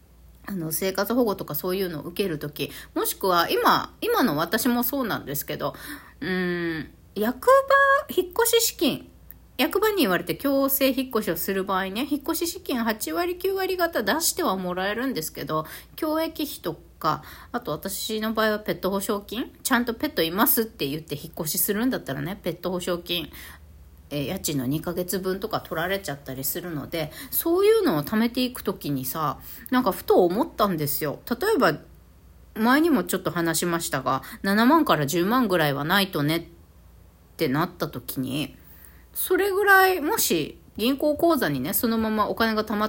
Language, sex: Japanese, female